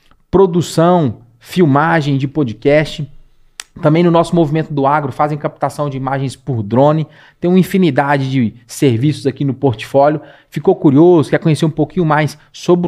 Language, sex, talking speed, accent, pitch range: Portuguese, male, 150 wpm, Brazilian, 135-170 Hz